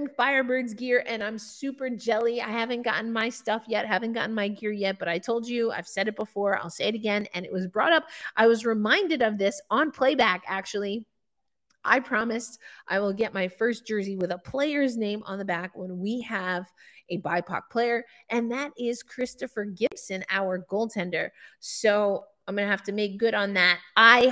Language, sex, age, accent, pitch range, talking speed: English, female, 30-49, American, 195-240 Hz, 200 wpm